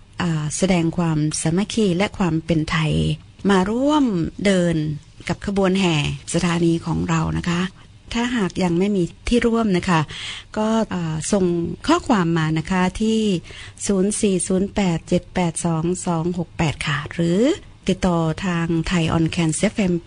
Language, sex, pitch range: Thai, female, 160-195 Hz